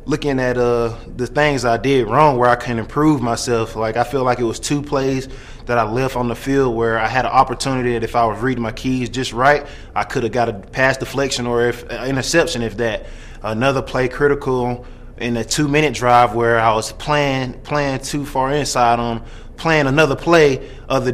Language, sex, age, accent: English, male, 20-39, American